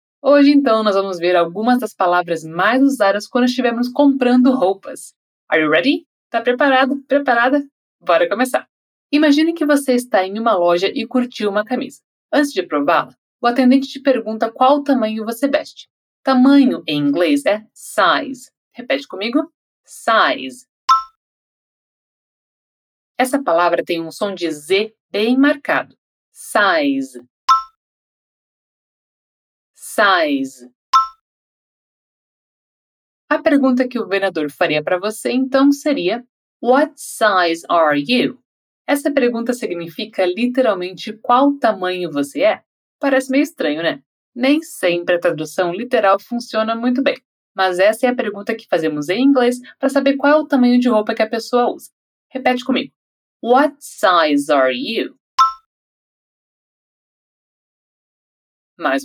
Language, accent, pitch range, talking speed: Portuguese, Brazilian, 200-275 Hz, 125 wpm